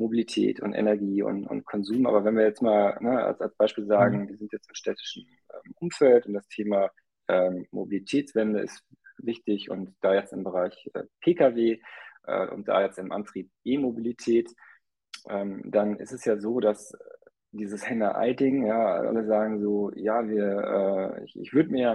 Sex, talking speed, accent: male, 180 wpm, German